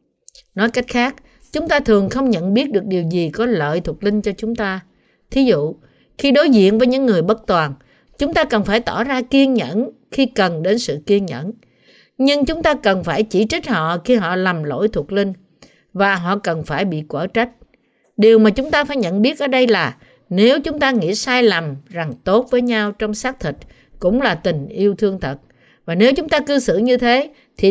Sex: female